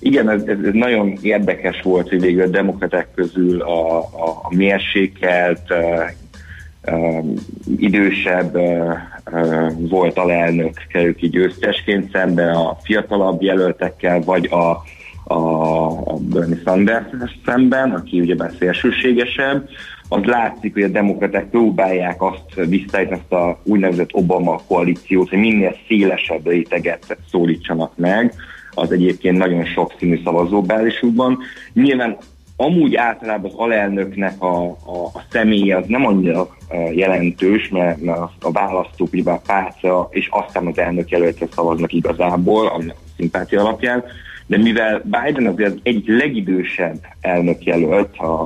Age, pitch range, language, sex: 30-49, 85-100 Hz, Hungarian, male